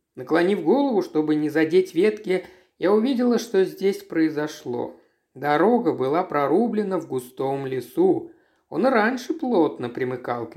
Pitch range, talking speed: 135-215 Hz, 125 wpm